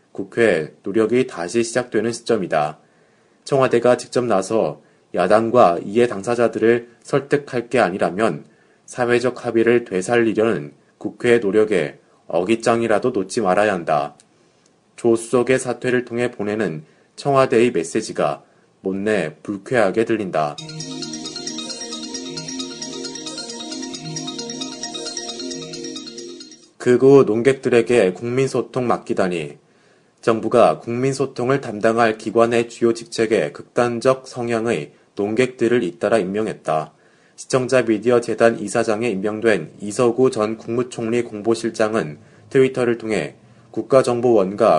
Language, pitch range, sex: Korean, 110-125 Hz, male